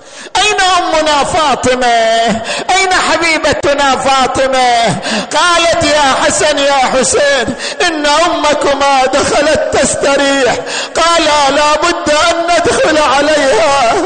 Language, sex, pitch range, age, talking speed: Arabic, male, 275-330 Hz, 50-69, 90 wpm